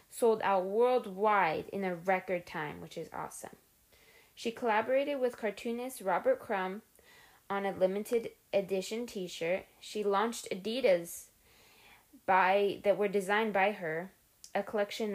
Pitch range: 185-225 Hz